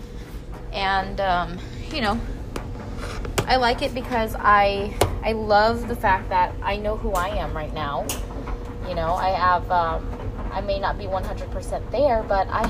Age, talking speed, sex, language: 20-39, 160 wpm, female, English